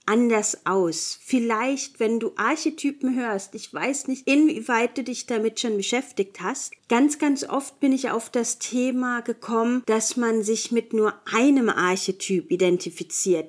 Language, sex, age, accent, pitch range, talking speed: German, female, 40-59, German, 200-250 Hz, 150 wpm